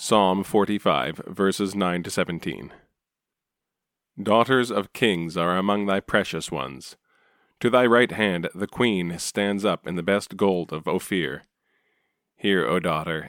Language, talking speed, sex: English, 135 wpm, male